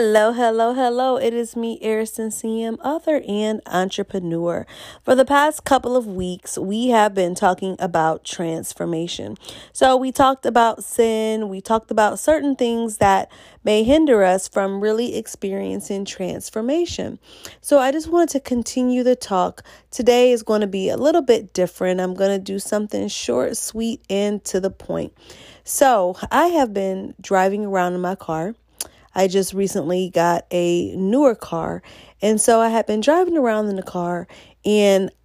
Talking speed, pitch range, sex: 160 wpm, 195-255 Hz, female